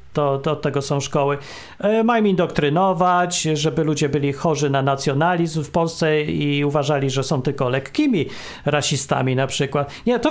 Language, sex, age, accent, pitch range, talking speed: Polish, male, 40-59, native, 145-205 Hz, 165 wpm